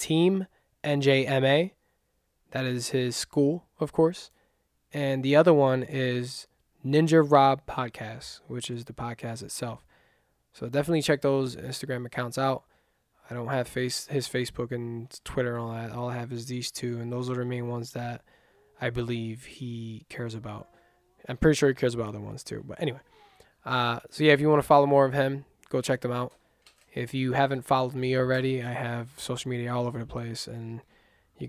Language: English